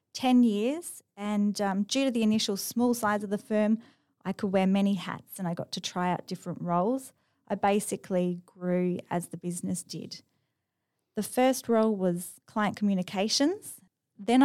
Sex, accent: female, Australian